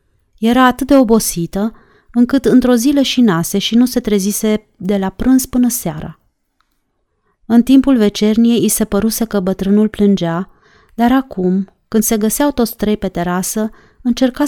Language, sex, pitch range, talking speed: Romanian, female, 185-235 Hz, 155 wpm